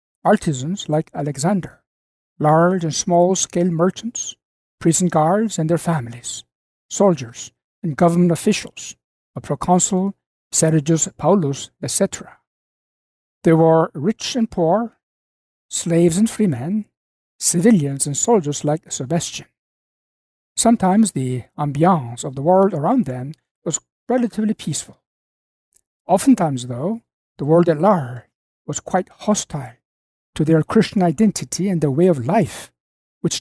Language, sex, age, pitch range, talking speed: English, male, 60-79, 140-190 Hz, 115 wpm